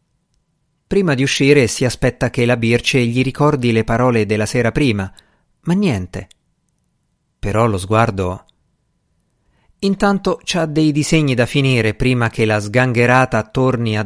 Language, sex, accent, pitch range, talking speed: Italian, male, native, 110-160 Hz, 135 wpm